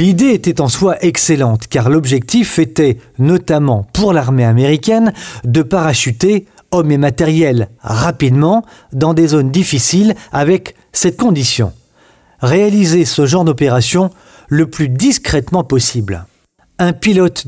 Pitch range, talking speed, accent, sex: 135-195 Hz, 120 wpm, French, male